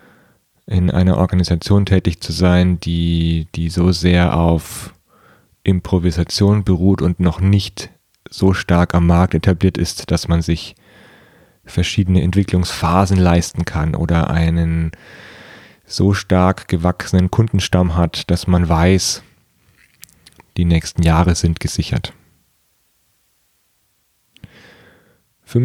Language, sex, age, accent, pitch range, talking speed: German, male, 30-49, German, 90-105 Hz, 105 wpm